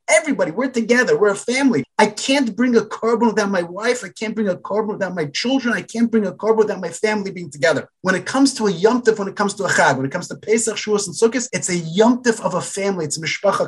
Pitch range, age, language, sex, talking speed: 165-225 Hz, 30-49, English, male, 270 wpm